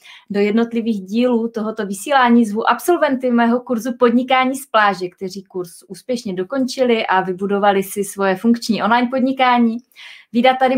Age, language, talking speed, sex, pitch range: 20-39, Czech, 140 wpm, female, 195-250 Hz